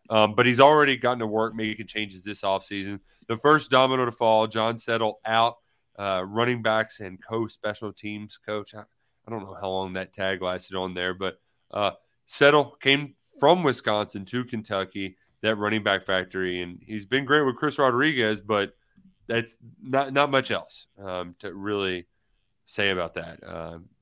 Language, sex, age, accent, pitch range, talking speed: English, male, 30-49, American, 95-115 Hz, 175 wpm